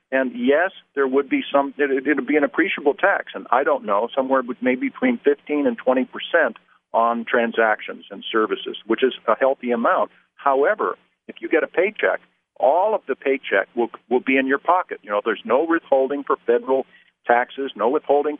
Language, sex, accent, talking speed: English, male, American, 190 wpm